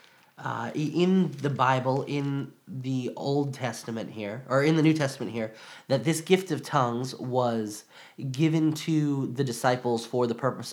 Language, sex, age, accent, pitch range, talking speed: English, male, 20-39, American, 115-160 Hz, 155 wpm